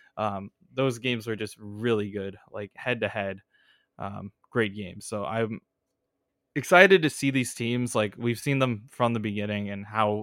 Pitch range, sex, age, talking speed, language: 105-130 Hz, male, 20-39, 170 wpm, English